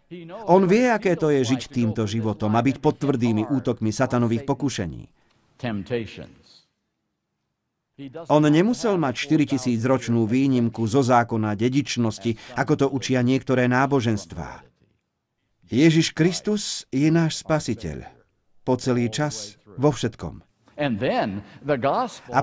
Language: Slovak